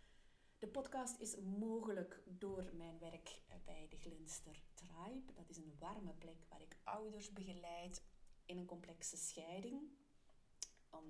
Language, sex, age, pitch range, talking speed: Dutch, female, 30-49, 165-195 Hz, 135 wpm